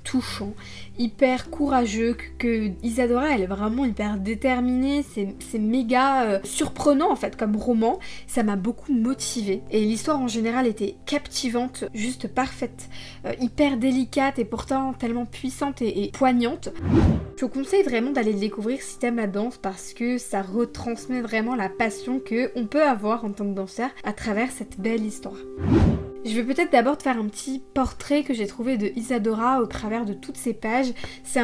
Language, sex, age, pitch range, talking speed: French, female, 20-39, 215-265 Hz, 175 wpm